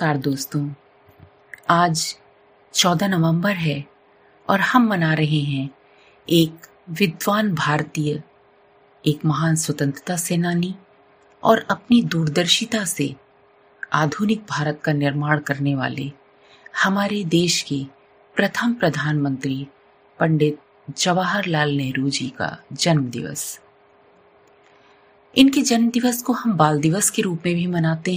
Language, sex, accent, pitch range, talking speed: Hindi, female, native, 145-200 Hz, 105 wpm